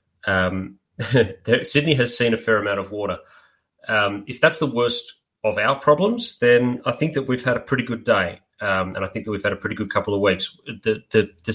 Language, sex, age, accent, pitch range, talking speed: English, male, 30-49, Australian, 105-125 Hz, 225 wpm